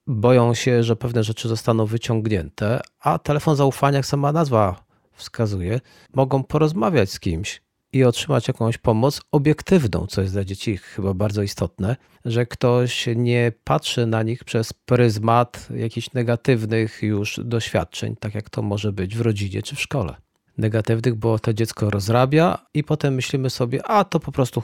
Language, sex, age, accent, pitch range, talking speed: Polish, male, 40-59, native, 110-140 Hz, 160 wpm